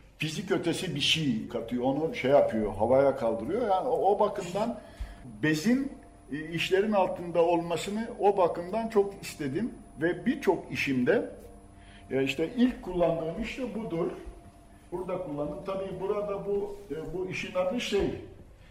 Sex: male